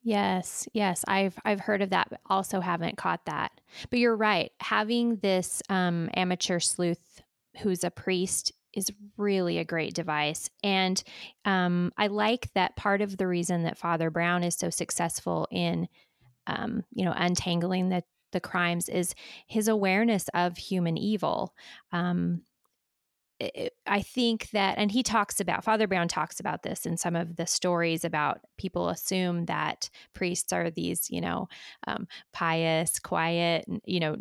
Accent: American